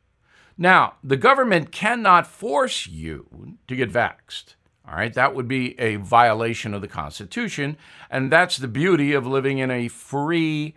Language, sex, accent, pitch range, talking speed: English, male, American, 130-170 Hz, 155 wpm